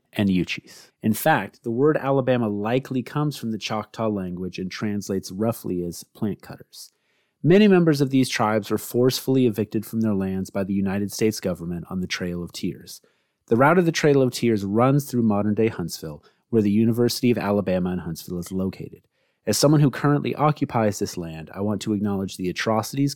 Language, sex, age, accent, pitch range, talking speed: English, male, 30-49, American, 90-115 Hz, 190 wpm